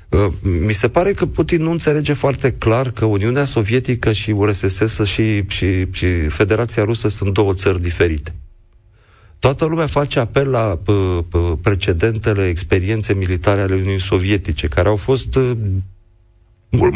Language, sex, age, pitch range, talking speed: Romanian, male, 40-59, 100-125 Hz, 135 wpm